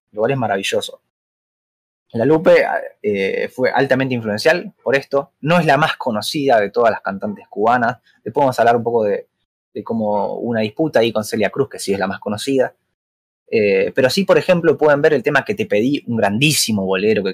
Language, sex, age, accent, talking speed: Spanish, male, 20-39, Argentinian, 205 wpm